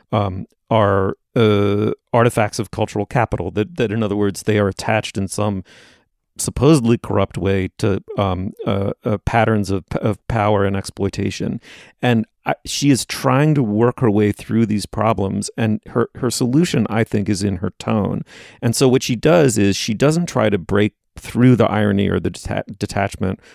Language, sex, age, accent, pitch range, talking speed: English, male, 40-59, American, 100-120 Hz, 175 wpm